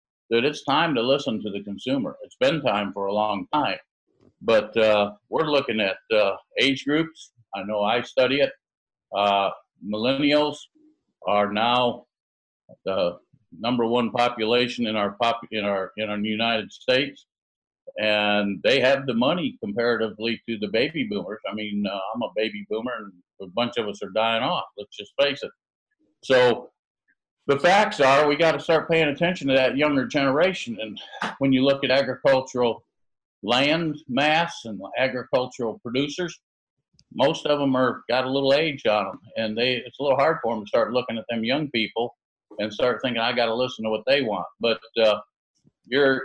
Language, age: English, 50-69